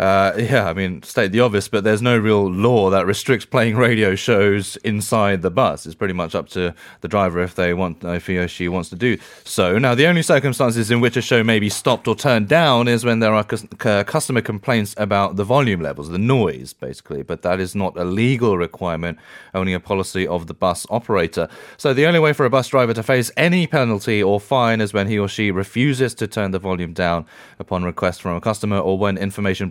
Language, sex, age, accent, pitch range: Korean, male, 30-49, British, 95-120 Hz